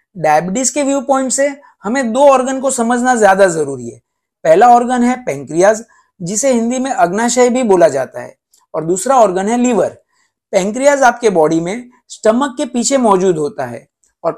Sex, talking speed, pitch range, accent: male, 170 wpm, 190-270 Hz, native